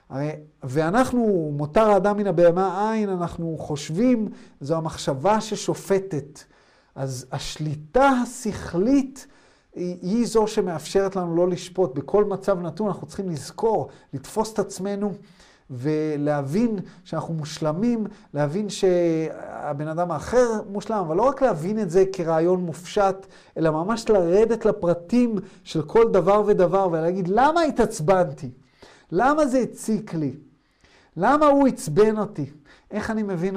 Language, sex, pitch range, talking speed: Hebrew, male, 155-210 Hz, 125 wpm